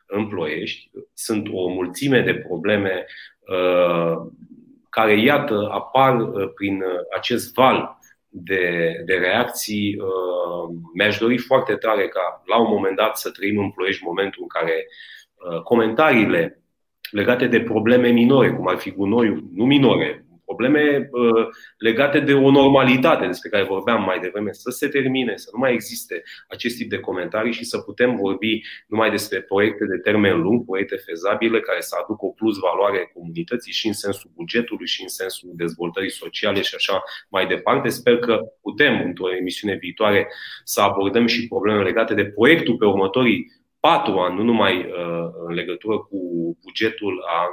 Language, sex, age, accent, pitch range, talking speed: Romanian, male, 30-49, native, 95-125 Hz, 155 wpm